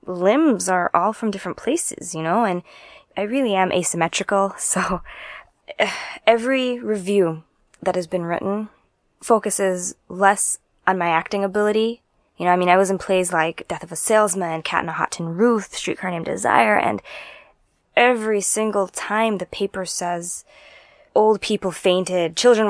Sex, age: female, 20-39